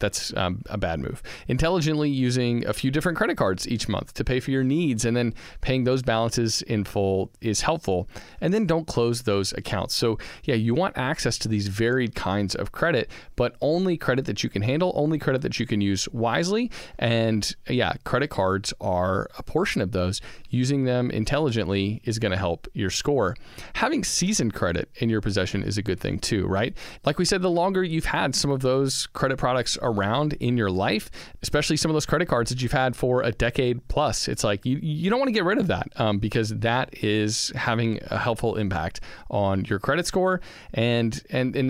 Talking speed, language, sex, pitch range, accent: 210 wpm, English, male, 105-135 Hz, American